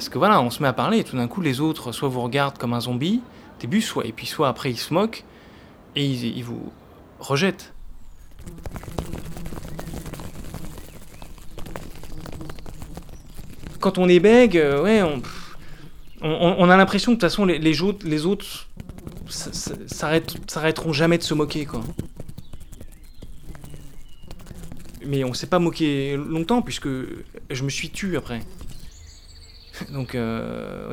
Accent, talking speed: French, 145 wpm